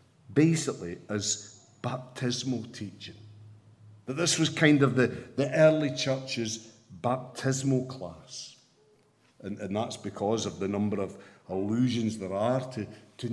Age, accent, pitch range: 50-69, British, 110-165 Hz